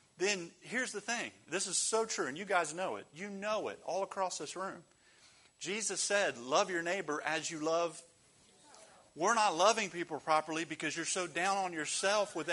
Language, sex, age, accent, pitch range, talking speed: English, male, 40-59, American, 160-220 Hz, 190 wpm